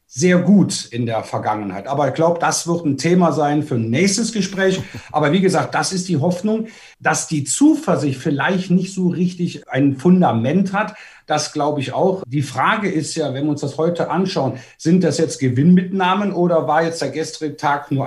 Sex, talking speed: male, 195 wpm